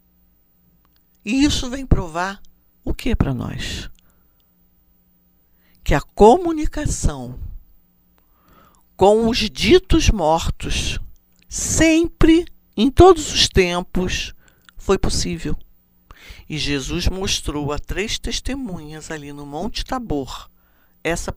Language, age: Portuguese, 60-79